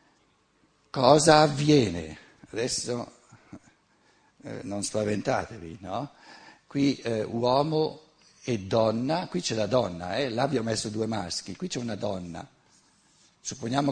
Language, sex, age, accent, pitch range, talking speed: Italian, male, 60-79, native, 110-150 Hz, 110 wpm